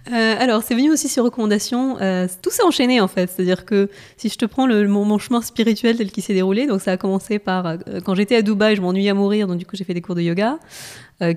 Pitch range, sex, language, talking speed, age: 180-210 Hz, female, French, 275 wpm, 20-39